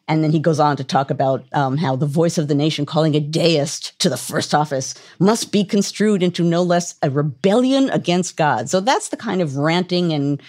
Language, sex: English, female